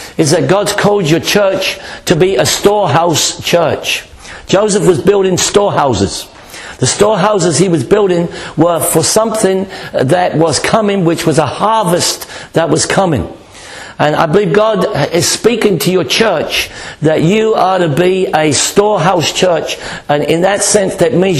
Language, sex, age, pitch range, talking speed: English, male, 60-79, 165-205 Hz, 155 wpm